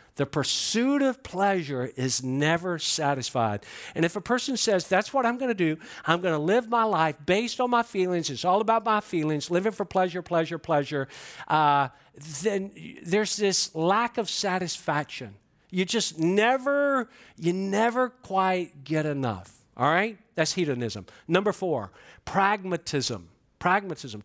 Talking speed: 150 wpm